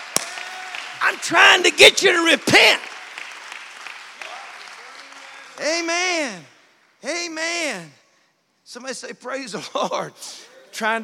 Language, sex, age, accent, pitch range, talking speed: English, male, 50-69, American, 220-295 Hz, 80 wpm